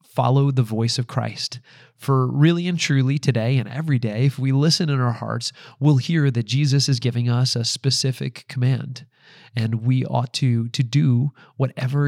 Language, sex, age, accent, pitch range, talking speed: English, male, 30-49, American, 115-135 Hz, 180 wpm